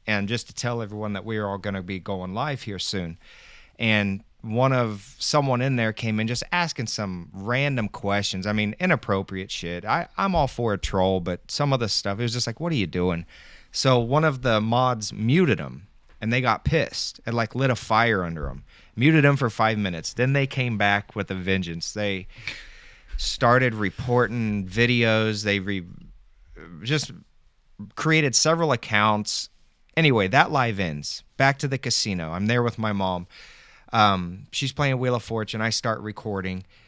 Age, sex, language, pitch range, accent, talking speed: 30-49, male, English, 100-130 Hz, American, 180 wpm